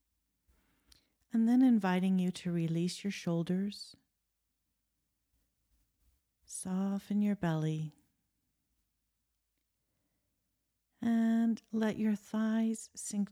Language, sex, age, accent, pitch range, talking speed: English, female, 50-69, American, 175-250 Hz, 70 wpm